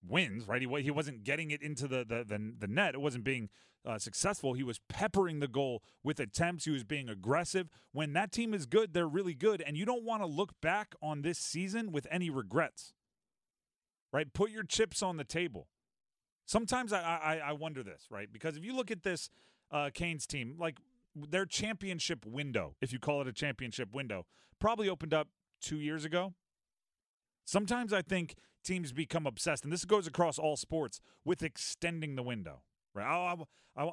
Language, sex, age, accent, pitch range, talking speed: English, male, 30-49, American, 135-180 Hz, 195 wpm